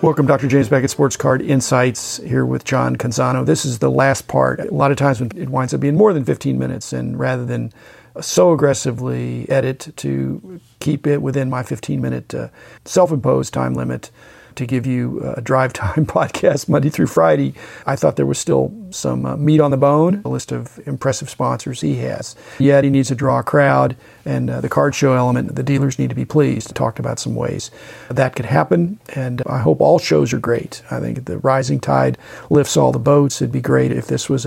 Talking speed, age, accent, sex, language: 210 wpm, 40-59, American, male, English